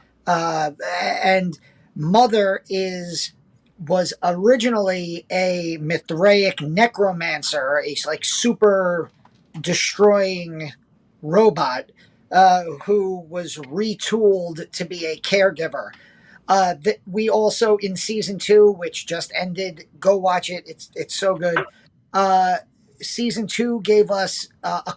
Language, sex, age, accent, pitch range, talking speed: English, male, 40-59, American, 170-210 Hz, 110 wpm